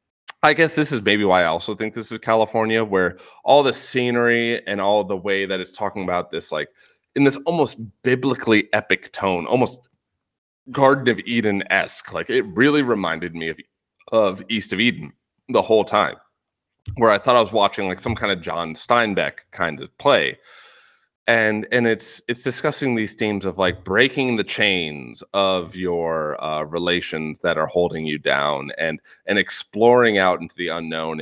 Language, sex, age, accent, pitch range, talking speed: English, male, 30-49, American, 90-120 Hz, 175 wpm